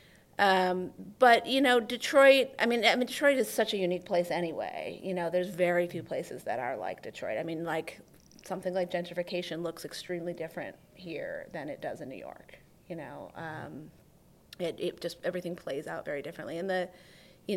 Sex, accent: female, American